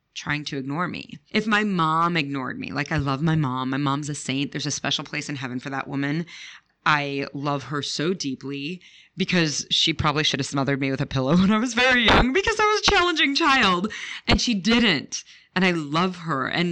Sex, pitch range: female, 140-185 Hz